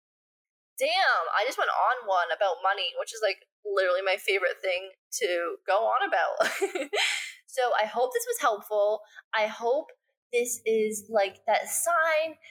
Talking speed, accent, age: 155 wpm, American, 20-39